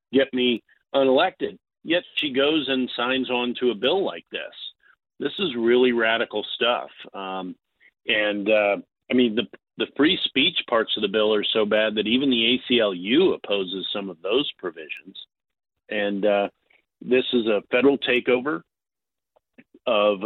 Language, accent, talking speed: English, American, 155 wpm